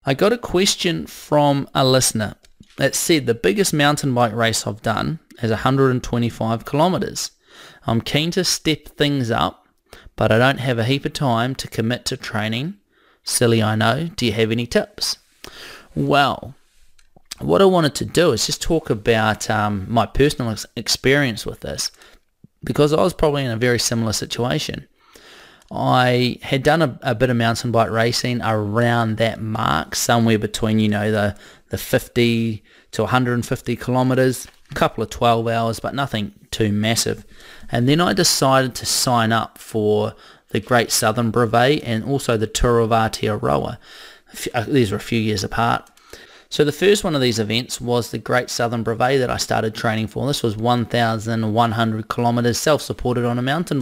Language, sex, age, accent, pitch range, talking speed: English, male, 20-39, Australian, 115-135 Hz, 170 wpm